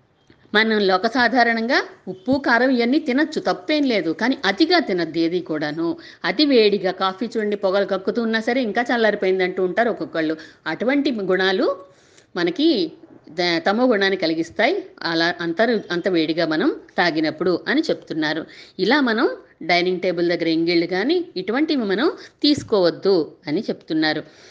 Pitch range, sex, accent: 175-260 Hz, female, native